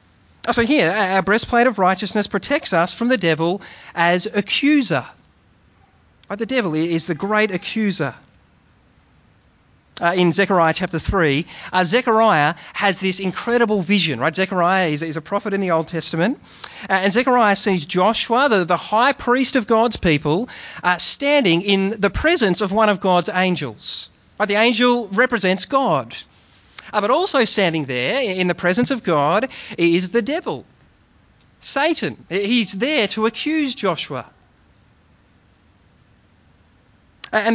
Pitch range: 155-225 Hz